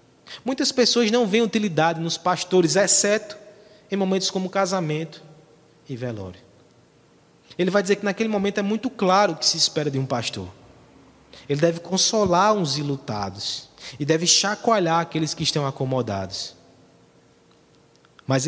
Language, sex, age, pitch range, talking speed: Portuguese, male, 20-39, 125-175 Hz, 140 wpm